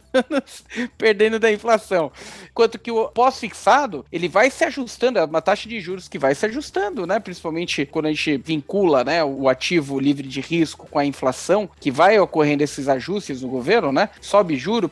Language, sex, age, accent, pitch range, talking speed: Portuguese, male, 40-59, Brazilian, 165-240 Hz, 180 wpm